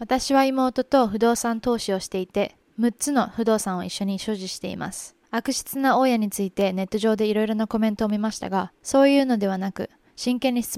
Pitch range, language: 200-250 Hz, Japanese